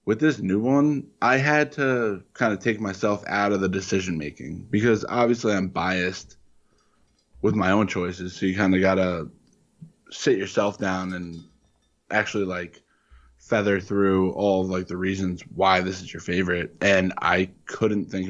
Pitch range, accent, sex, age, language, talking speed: 90-105 Hz, American, male, 20-39, English, 165 wpm